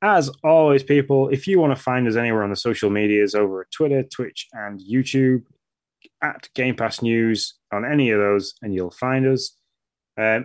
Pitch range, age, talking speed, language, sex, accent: 105-130 Hz, 10-29, 190 wpm, English, male, British